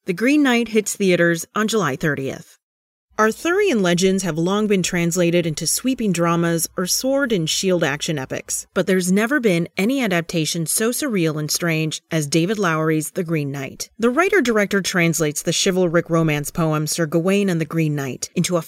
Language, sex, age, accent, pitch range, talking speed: English, female, 30-49, American, 165-215 Hz, 175 wpm